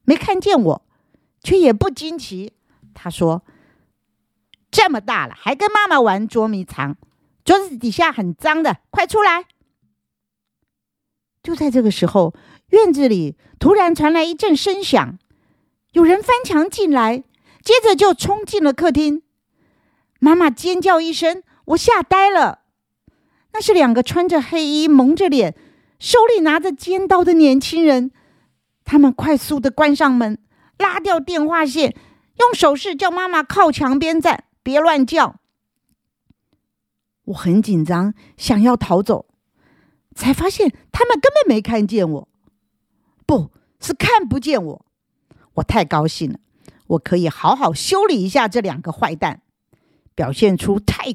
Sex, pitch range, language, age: female, 225-370 Hz, Chinese, 50-69